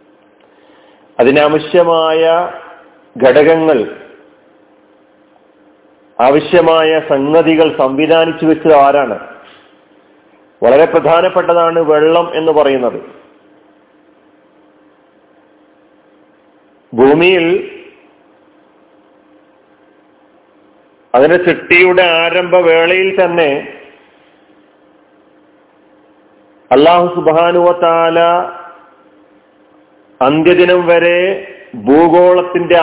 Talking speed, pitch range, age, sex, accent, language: 40 wpm, 105-175 Hz, 40-59, male, native, Malayalam